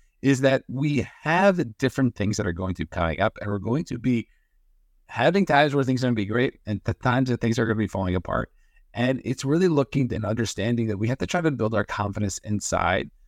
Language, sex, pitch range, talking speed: English, male, 100-130 Hz, 235 wpm